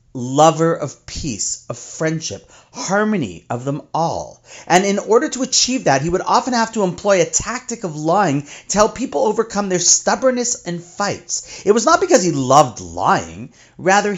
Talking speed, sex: 175 wpm, male